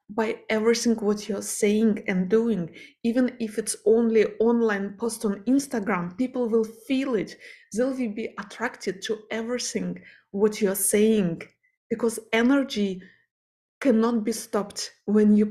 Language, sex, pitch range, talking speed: English, female, 200-255 Hz, 130 wpm